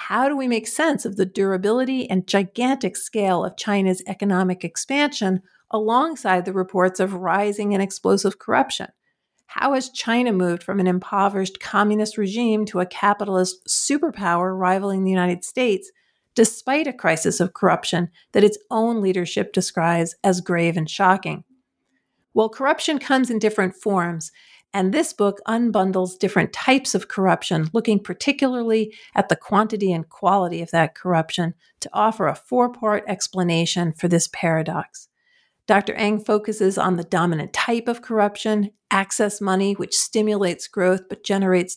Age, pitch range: 50-69, 180-220 Hz